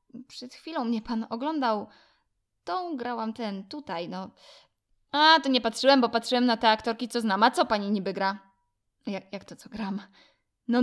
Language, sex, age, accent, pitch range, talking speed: Polish, female, 20-39, native, 200-250 Hz, 175 wpm